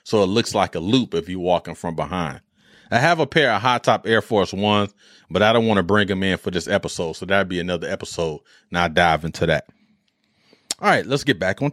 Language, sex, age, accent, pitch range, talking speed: English, male, 30-49, American, 100-140 Hz, 240 wpm